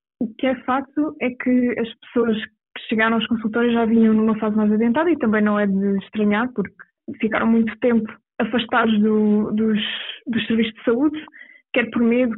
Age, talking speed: 20-39, 180 wpm